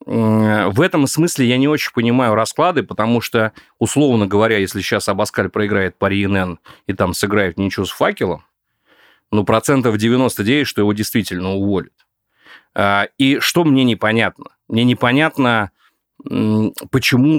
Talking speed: 130 wpm